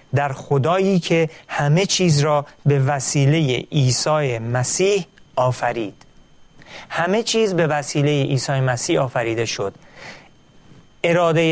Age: 40-59